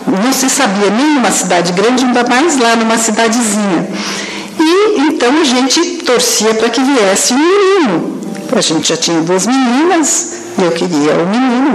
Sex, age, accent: female, 60-79, Brazilian